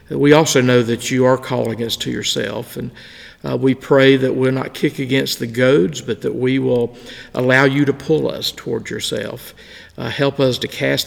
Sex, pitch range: male, 120-140 Hz